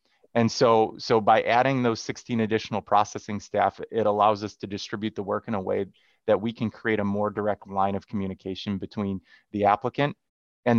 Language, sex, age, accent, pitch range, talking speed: English, male, 30-49, American, 105-120 Hz, 190 wpm